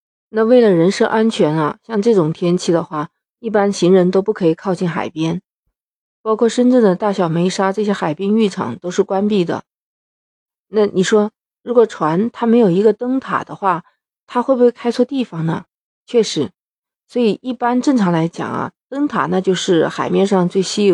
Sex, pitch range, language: female, 180-235 Hz, Chinese